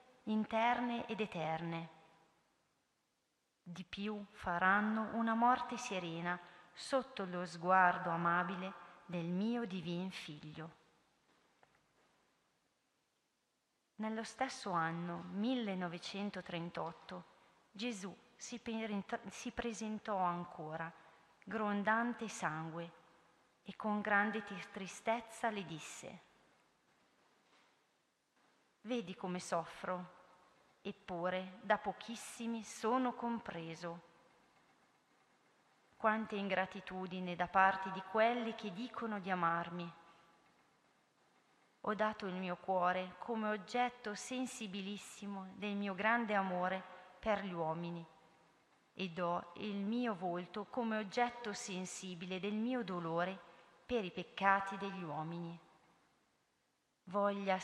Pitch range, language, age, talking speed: 175-220 Hz, Italian, 40-59, 85 wpm